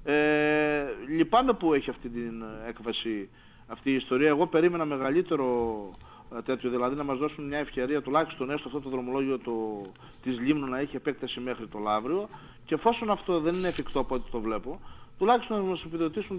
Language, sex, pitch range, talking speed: Greek, male, 120-165 Hz, 175 wpm